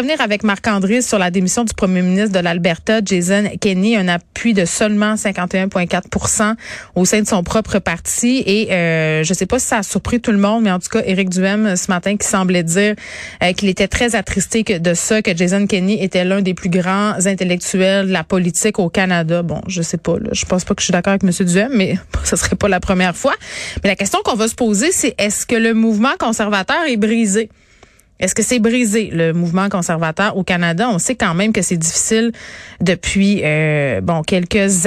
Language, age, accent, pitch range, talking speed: French, 30-49, Canadian, 175-215 Hz, 215 wpm